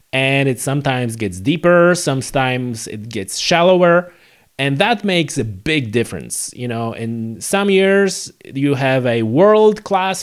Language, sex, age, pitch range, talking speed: English, male, 30-49, 115-170 Hz, 145 wpm